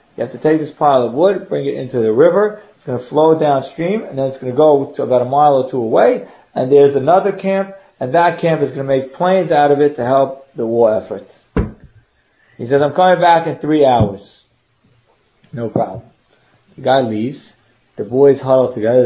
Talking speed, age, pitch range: 215 wpm, 40-59, 125-160 Hz